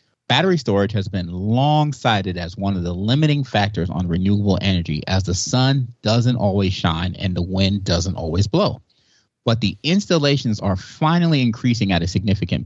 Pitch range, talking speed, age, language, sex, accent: 95-125 Hz, 170 wpm, 30-49, English, male, American